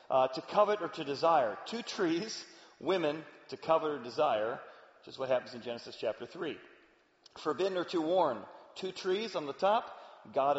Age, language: 40-59, English